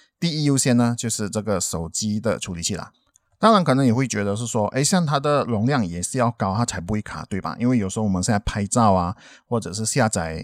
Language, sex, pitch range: Chinese, male, 100-130 Hz